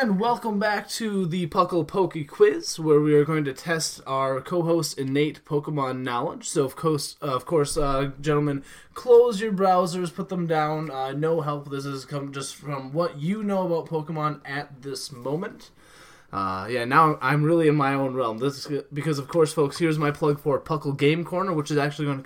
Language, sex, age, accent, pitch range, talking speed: English, male, 20-39, American, 140-175 Hz, 205 wpm